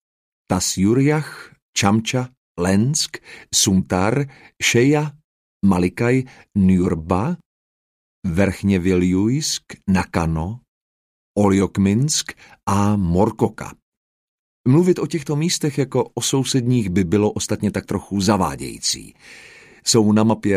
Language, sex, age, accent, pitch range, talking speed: Czech, male, 40-59, native, 95-140 Hz, 80 wpm